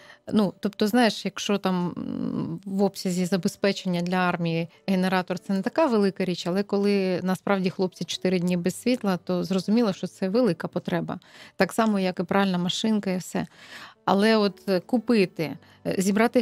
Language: Ukrainian